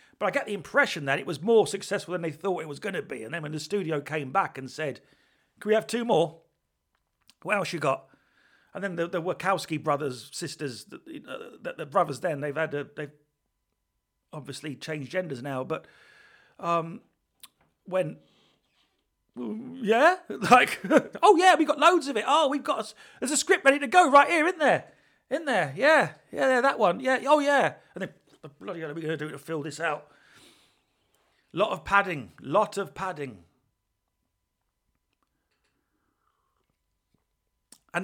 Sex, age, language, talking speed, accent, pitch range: male, 40-59, English, 180 wpm, British, 150-235 Hz